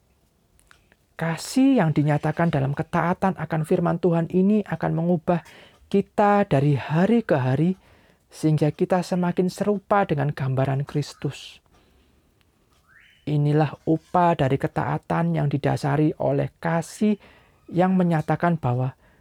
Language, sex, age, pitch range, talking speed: Indonesian, male, 40-59, 125-170 Hz, 105 wpm